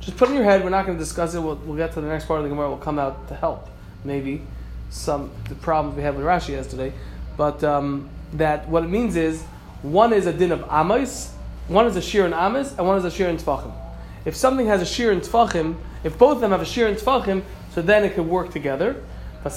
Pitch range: 155-215 Hz